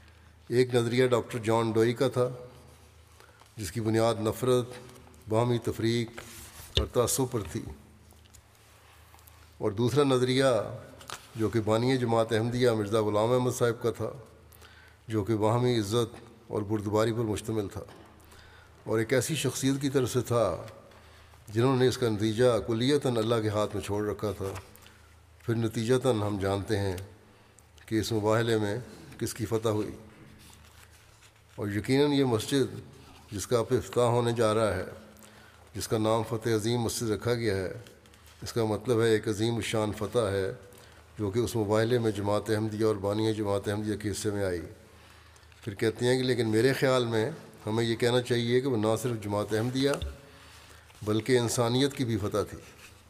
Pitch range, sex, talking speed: 100-120 Hz, male, 160 wpm